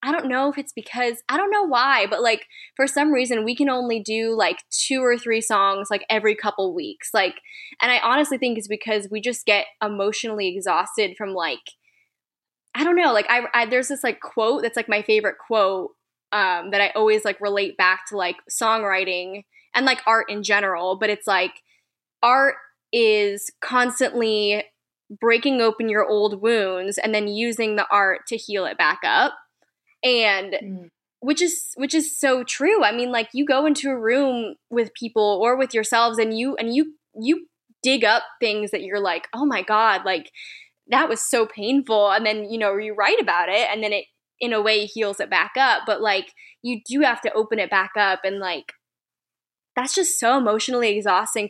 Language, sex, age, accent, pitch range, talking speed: English, female, 10-29, American, 205-255 Hz, 195 wpm